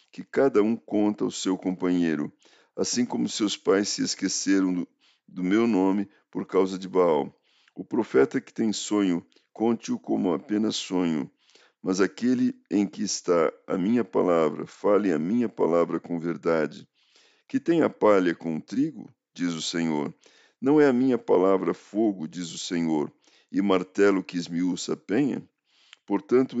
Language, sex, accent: Portuguese, male, Brazilian